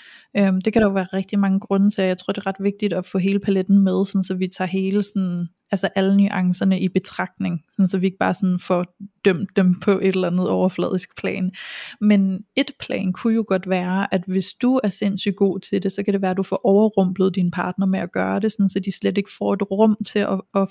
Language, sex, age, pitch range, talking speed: Danish, female, 20-39, 190-215 Hz, 230 wpm